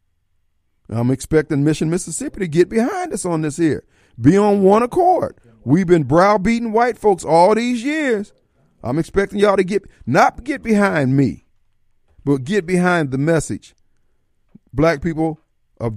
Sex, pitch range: male, 120-175 Hz